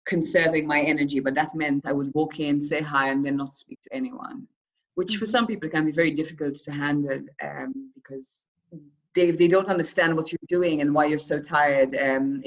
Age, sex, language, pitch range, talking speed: 30-49, female, English, 140-175 Hz, 205 wpm